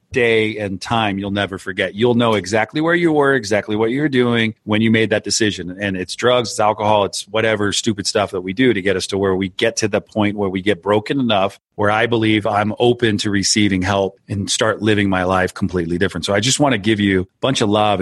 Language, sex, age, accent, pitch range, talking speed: English, male, 30-49, American, 100-120 Hz, 245 wpm